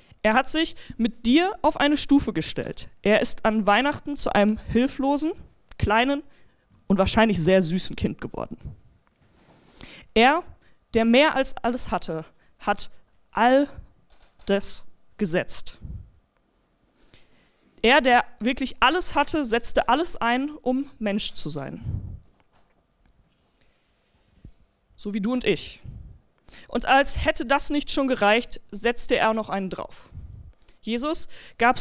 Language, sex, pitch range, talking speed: German, female, 200-270 Hz, 120 wpm